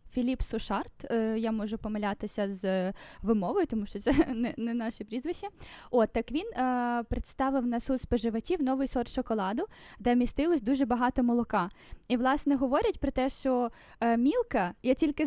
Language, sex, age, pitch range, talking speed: Ukrainian, female, 10-29, 225-275 Hz, 155 wpm